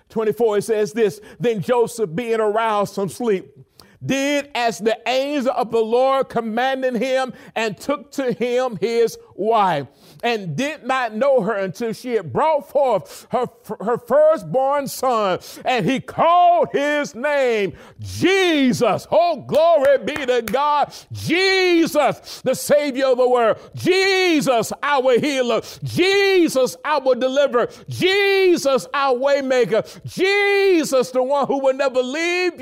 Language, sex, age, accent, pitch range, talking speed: English, male, 50-69, American, 220-280 Hz, 130 wpm